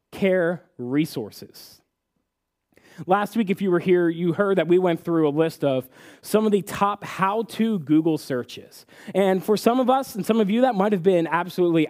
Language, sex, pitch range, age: English, male, 170-245 Hz, 20-39